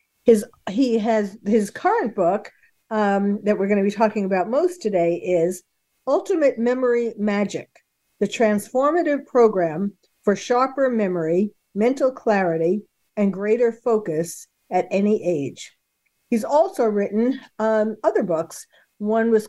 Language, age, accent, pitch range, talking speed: English, 50-69, American, 200-235 Hz, 125 wpm